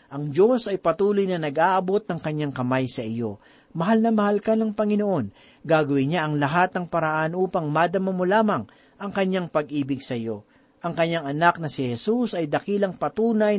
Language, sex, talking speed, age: Filipino, male, 180 wpm, 40-59